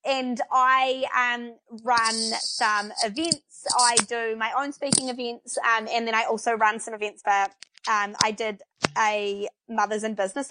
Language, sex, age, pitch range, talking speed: English, female, 20-39, 220-270 Hz, 160 wpm